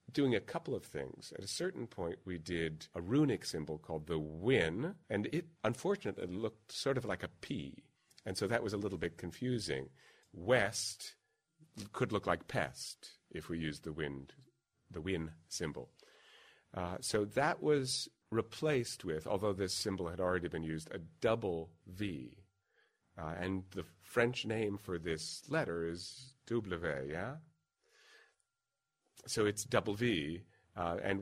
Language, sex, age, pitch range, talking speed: English, male, 40-59, 85-120 Hz, 155 wpm